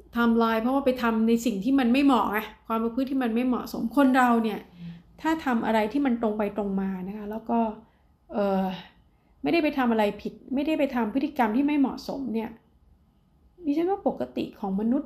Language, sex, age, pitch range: Thai, female, 30-49, 215-255 Hz